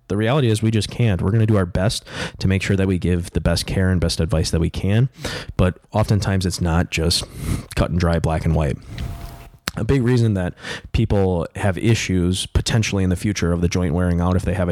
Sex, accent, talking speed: male, American, 230 wpm